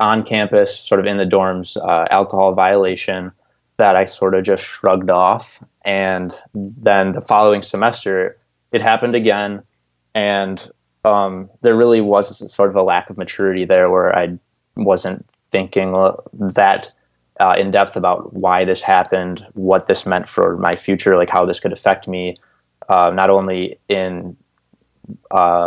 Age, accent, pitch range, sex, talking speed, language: 20-39, American, 95-105 Hz, male, 155 wpm, English